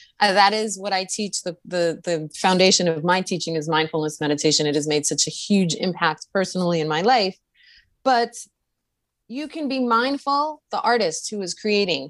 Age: 30-49